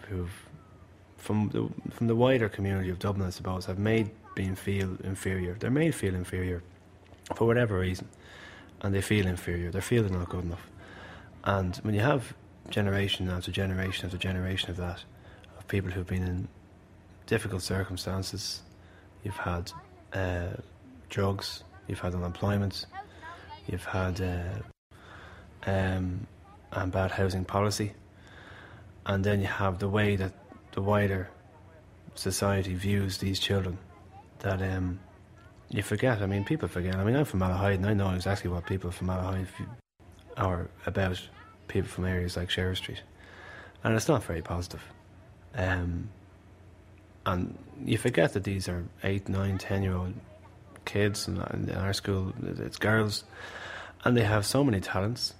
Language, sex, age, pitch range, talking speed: English, male, 20-39, 90-105 Hz, 150 wpm